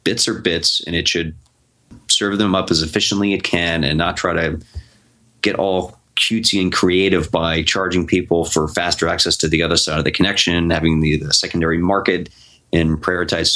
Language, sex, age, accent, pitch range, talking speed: English, male, 30-49, American, 80-100 Hz, 185 wpm